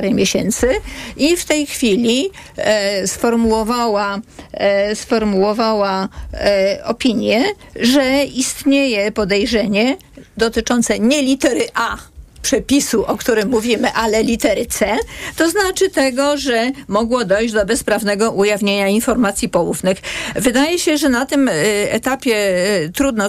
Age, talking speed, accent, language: 40-59, 110 wpm, native, Polish